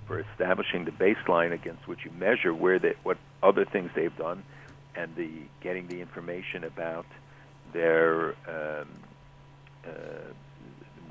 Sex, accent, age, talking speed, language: male, American, 60-79, 130 wpm, English